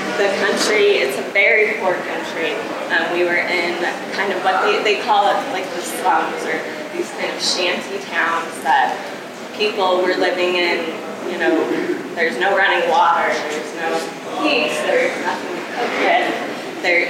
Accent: American